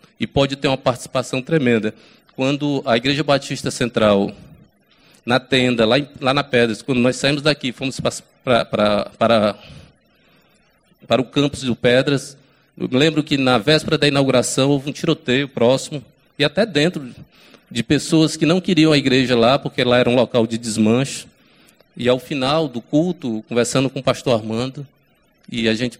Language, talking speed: Portuguese, 160 wpm